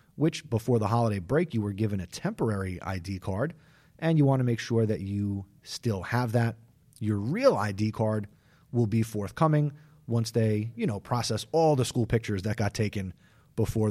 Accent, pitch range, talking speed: American, 105-140 Hz, 185 wpm